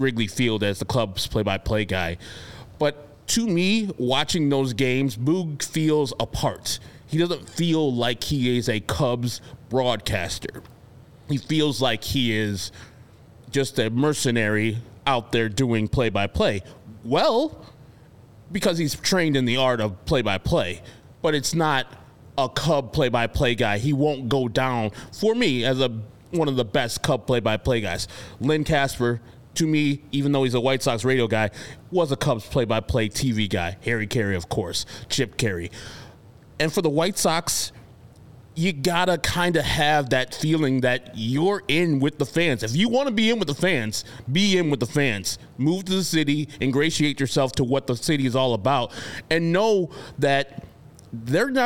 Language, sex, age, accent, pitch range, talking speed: English, male, 20-39, American, 115-155 Hz, 165 wpm